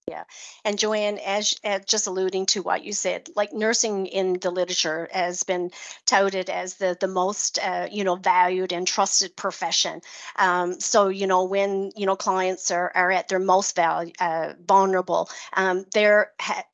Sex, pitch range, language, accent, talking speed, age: female, 175-200 Hz, English, American, 175 wpm, 50-69